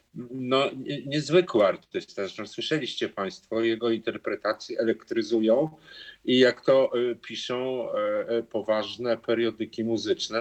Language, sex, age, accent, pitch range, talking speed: Polish, male, 50-69, native, 105-155 Hz, 90 wpm